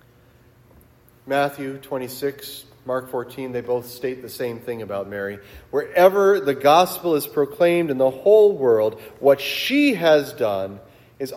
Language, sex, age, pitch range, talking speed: English, male, 30-49, 120-155 Hz, 135 wpm